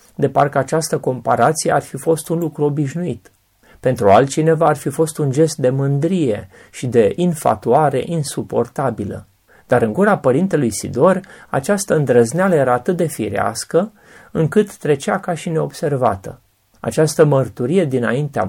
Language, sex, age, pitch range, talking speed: Romanian, male, 30-49, 120-165 Hz, 135 wpm